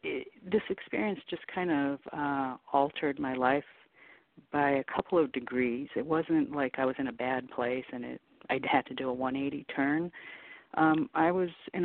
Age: 50-69